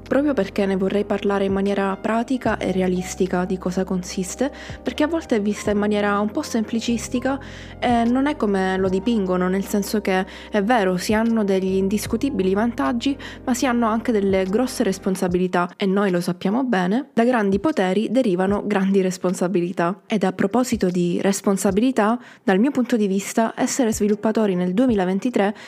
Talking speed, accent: 165 wpm, native